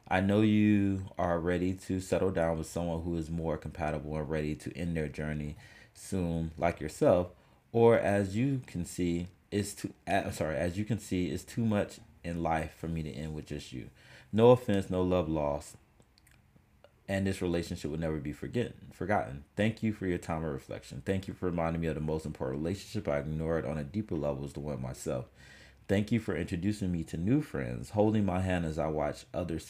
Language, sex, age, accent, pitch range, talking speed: English, male, 30-49, American, 75-100 Hz, 210 wpm